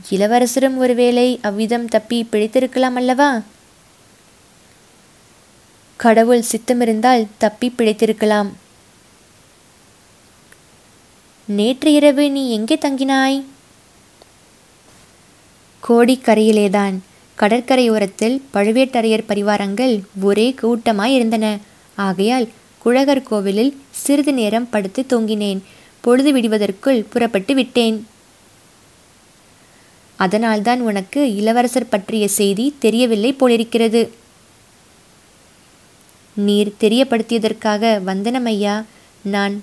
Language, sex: Tamil, female